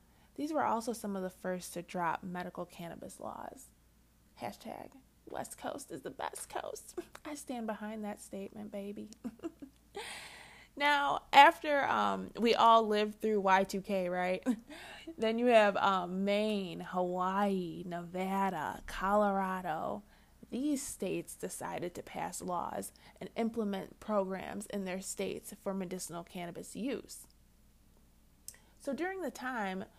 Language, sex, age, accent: English, female, 20-39, American